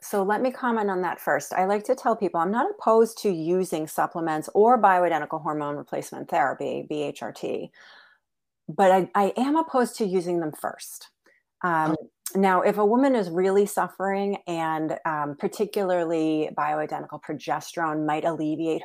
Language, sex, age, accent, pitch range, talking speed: English, female, 30-49, American, 160-205 Hz, 155 wpm